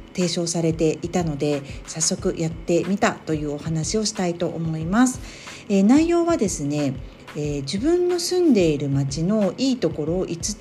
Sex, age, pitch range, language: female, 40-59, 150-235 Hz, Japanese